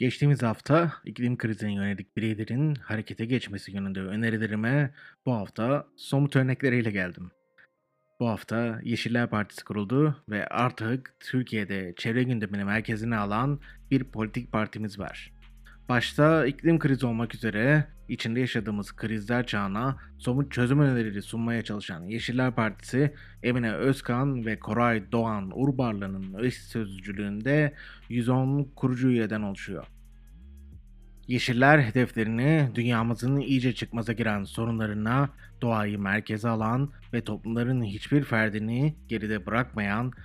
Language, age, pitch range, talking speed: Turkish, 30-49, 105-125 Hz, 110 wpm